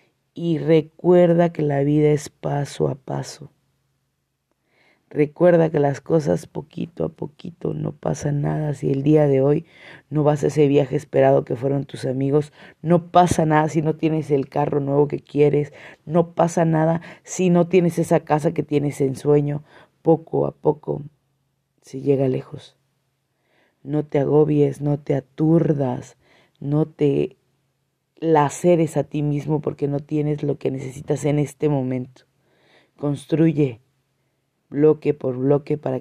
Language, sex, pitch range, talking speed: Spanish, female, 135-155 Hz, 150 wpm